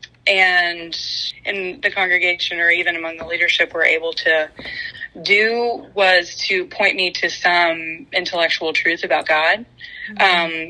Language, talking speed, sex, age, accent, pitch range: English, 135 wpm, female, 20-39, American, 165-200 Hz